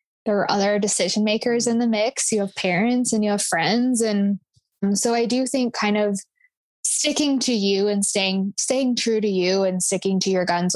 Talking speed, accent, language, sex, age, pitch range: 200 wpm, American, English, female, 10-29, 200-245 Hz